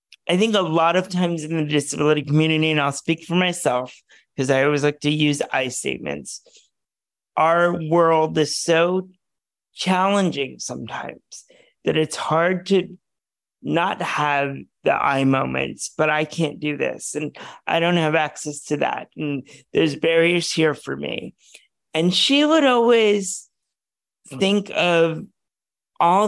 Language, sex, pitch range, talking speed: English, male, 155-185 Hz, 145 wpm